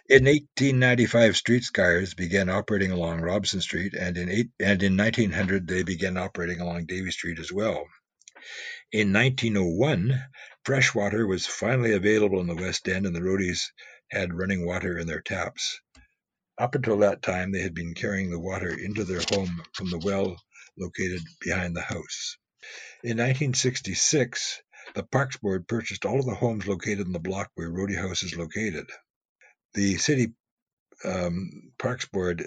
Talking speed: 160 wpm